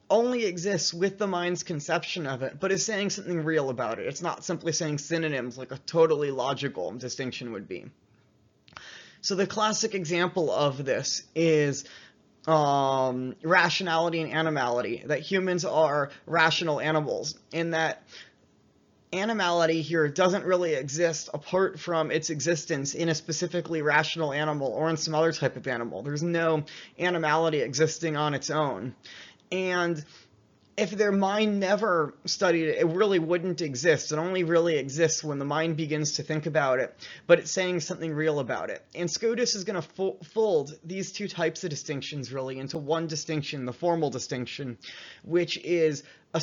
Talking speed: 160 wpm